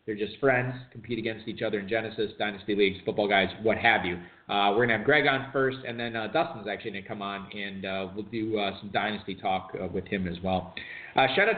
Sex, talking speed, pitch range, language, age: male, 250 wpm, 120-155 Hz, English, 40-59